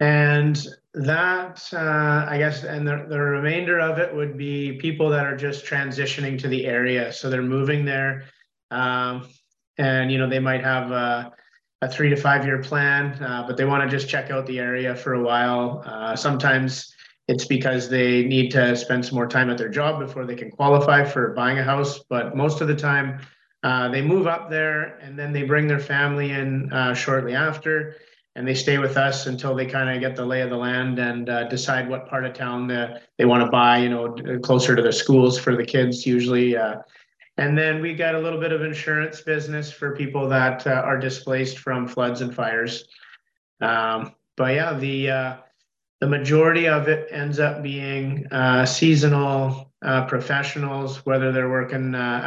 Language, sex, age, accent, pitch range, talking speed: English, male, 30-49, American, 125-145 Hz, 195 wpm